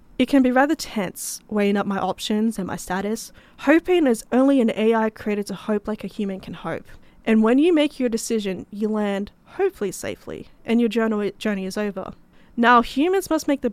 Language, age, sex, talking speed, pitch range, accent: English, 10-29, female, 195 wpm, 205-255 Hz, Australian